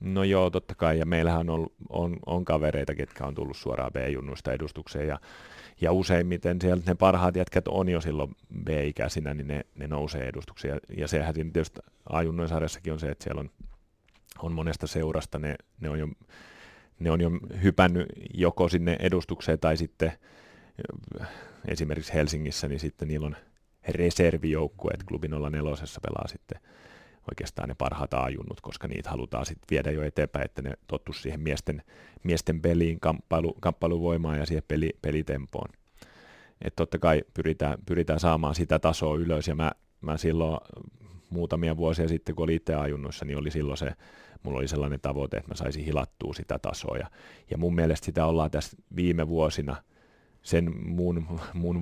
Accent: native